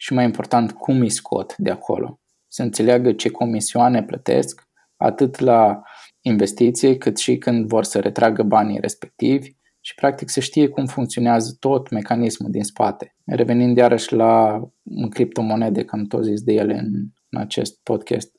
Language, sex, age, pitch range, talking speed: Romanian, male, 20-39, 110-130 Hz, 155 wpm